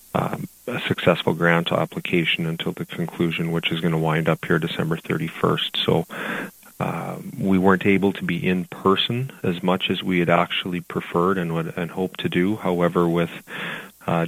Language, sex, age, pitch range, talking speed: English, male, 30-49, 85-95 Hz, 175 wpm